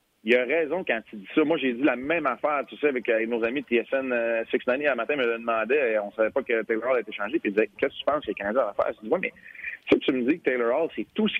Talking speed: 340 wpm